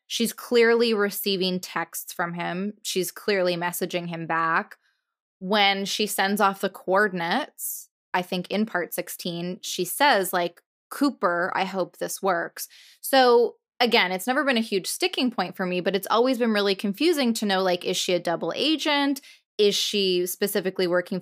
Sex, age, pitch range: female, 20-39, 180-235 Hz